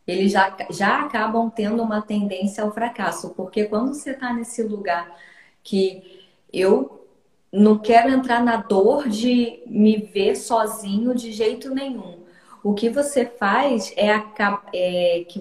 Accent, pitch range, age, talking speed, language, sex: Brazilian, 195-245 Hz, 20-39, 140 wpm, Portuguese, female